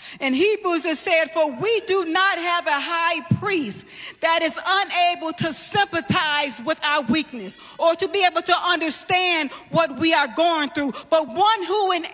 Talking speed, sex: 175 wpm, female